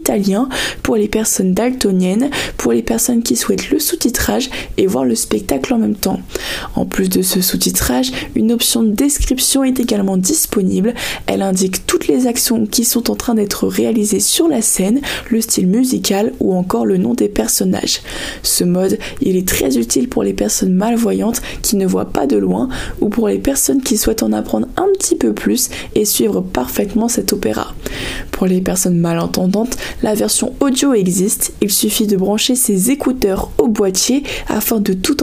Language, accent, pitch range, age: French, French, 195-250 Hz, 20-39